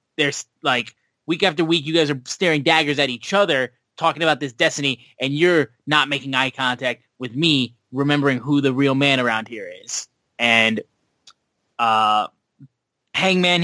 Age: 20-39